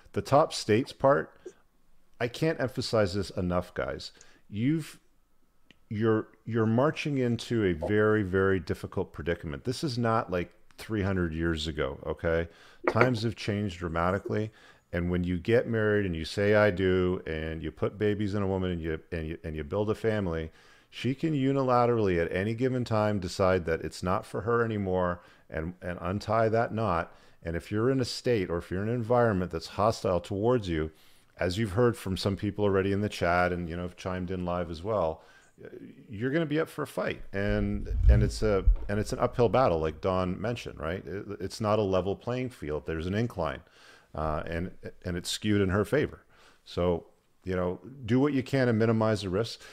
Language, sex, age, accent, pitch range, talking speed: English, male, 40-59, American, 90-115 Hz, 195 wpm